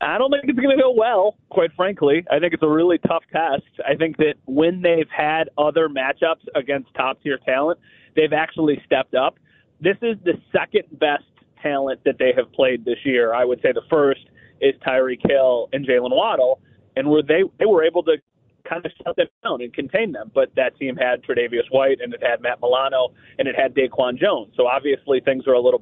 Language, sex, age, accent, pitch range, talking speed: English, male, 30-49, American, 140-195 Hz, 210 wpm